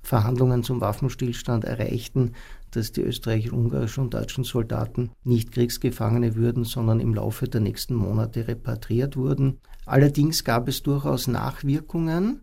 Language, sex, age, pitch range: German, male, 50-69, 115-135 Hz